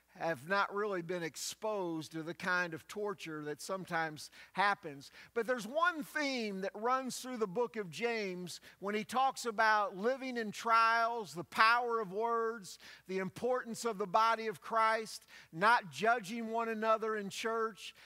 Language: English